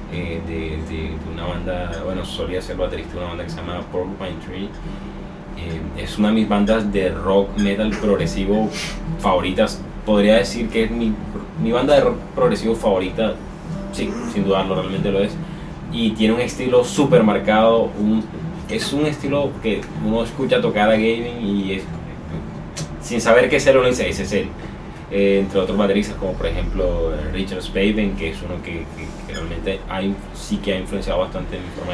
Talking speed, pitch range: 185 wpm, 90-110 Hz